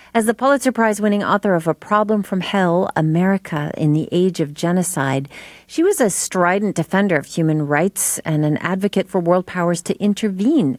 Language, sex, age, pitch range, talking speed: English, female, 40-59, 145-200 Hz, 180 wpm